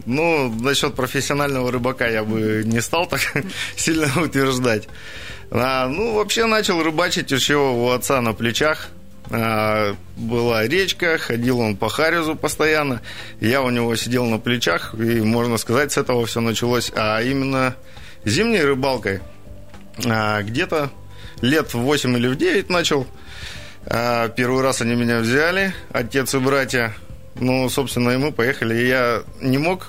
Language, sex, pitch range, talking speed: Russian, male, 115-140 Hz, 145 wpm